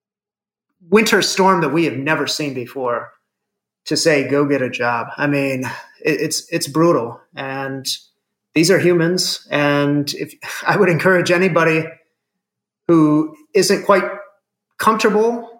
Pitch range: 135-185 Hz